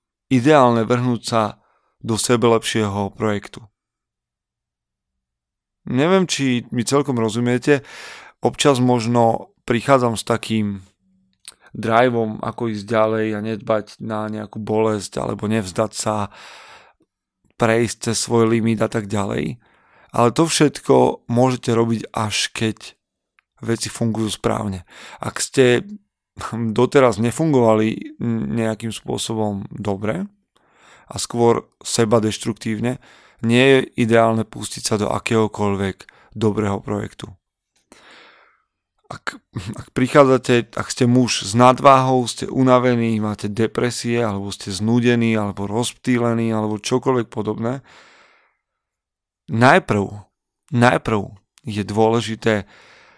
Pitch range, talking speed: 105-120 Hz, 100 wpm